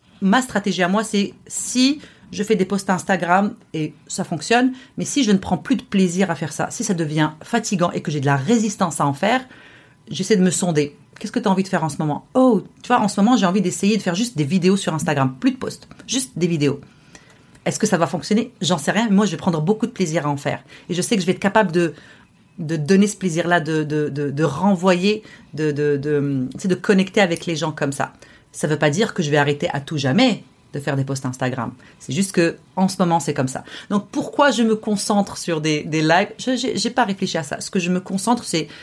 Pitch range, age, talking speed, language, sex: 160-215 Hz, 30-49, 265 wpm, French, female